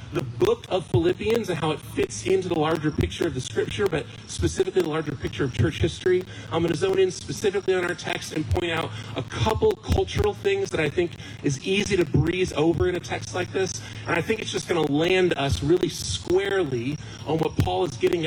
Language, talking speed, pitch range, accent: English, 225 wpm, 120-205 Hz, American